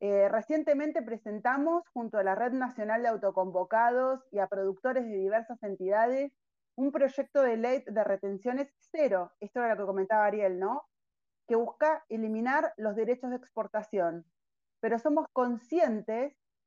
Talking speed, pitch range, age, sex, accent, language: 145 wpm, 195-260 Hz, 30-49, female, Argentinian, Spanish